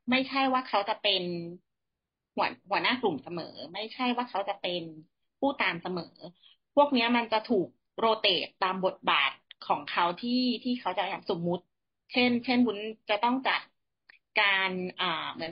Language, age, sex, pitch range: Thai, 30-49, female, 175-230 Hz